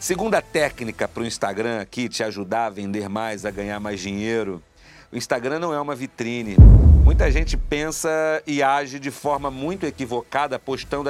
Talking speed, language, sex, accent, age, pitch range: 170 wpm, Portuguese, male, Brazilian, 40-59, 120-185 Hz